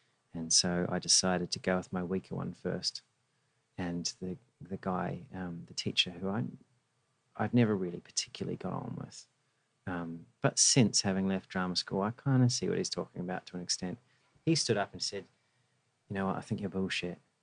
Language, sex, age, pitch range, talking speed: English, male, 40-59, 95-125 Hz, 195 wpm